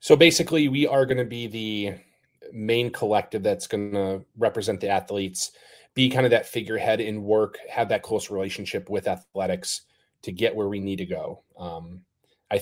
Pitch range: 95-115 Hz